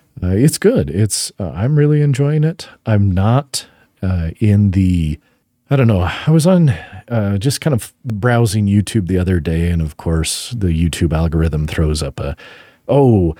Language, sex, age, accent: English, male, 40-59, American